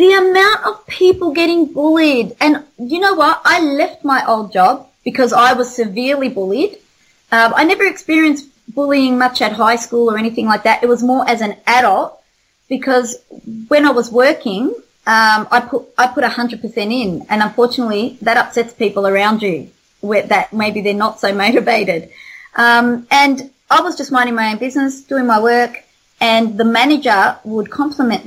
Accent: Australian